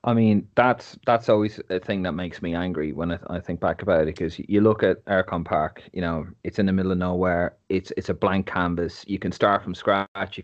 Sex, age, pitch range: male, 30-49, 95-105 Hz